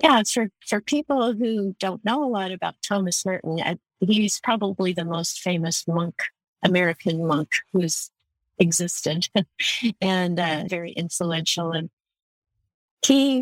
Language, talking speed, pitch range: English, 130 wpm, 175-210 Hz